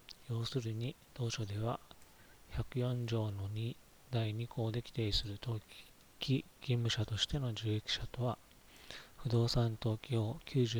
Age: 40-59